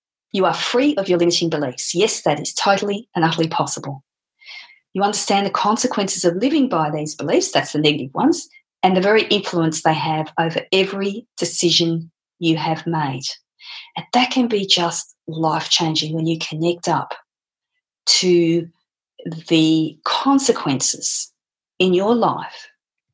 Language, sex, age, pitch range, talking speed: English, female, 40-59, 155-195 Hz, 145 wpm